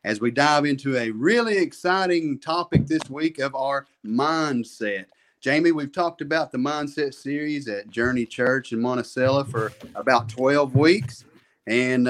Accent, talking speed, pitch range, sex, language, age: American, 150 wpm, 120-150 Hz, male, English, 40-59